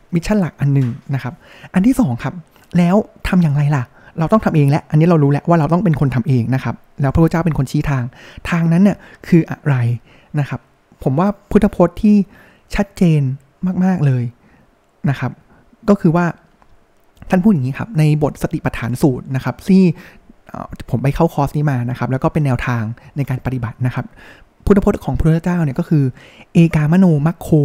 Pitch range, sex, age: 135-175 Hz, male, 20-39